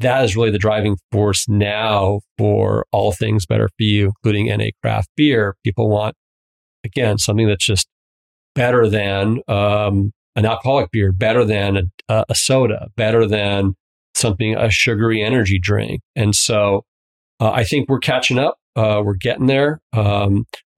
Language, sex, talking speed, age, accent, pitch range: English, male, 155 wpm, 40-59, American, 105-125 Hz